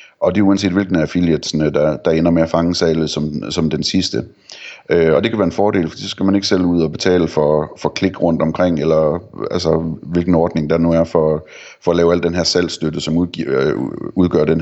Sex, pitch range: male, 80-90 Hz